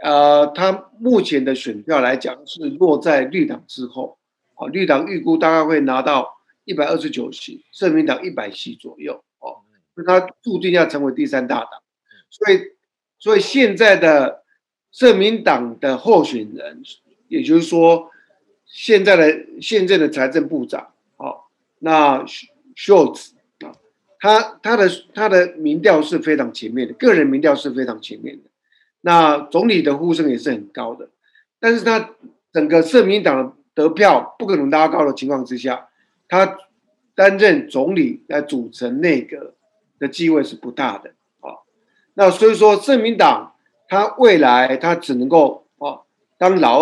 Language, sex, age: Chinese, male, 50-69